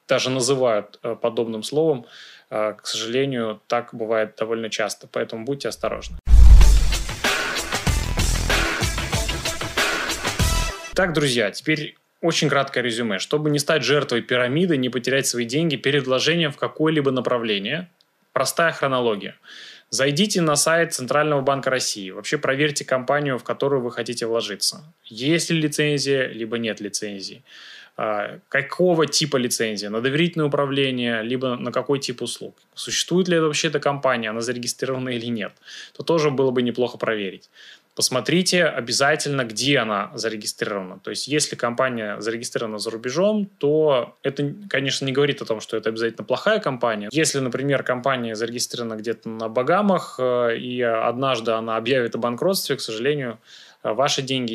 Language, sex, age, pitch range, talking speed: Russian, male, 20-39, 115-145 Hz, 135 wpm